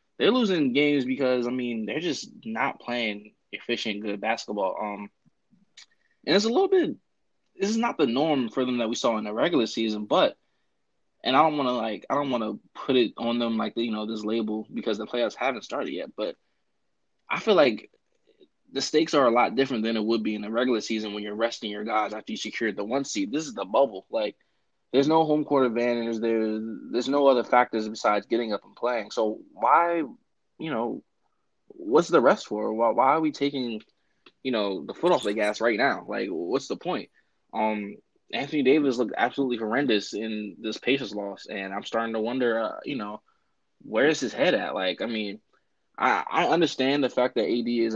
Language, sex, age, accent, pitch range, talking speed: English, male, 20-39, American, 110-135 Hz, 210 wpm